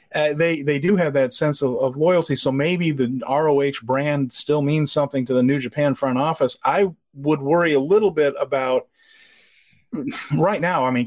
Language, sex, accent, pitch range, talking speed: English, male, American, 125-155 Hz, 190 wpm